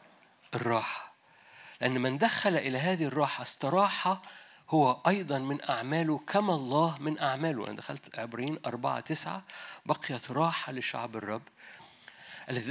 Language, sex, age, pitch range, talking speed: Arabic, male, 50-69, 130-165 Hz, 120 wpm